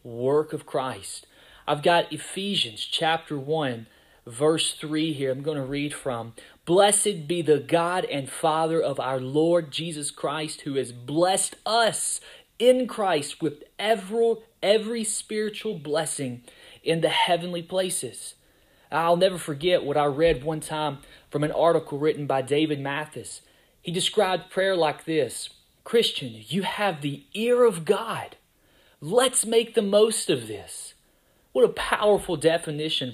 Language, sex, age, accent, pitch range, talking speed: English, male, 30-49, American, 145-190 Hz, 145 wpm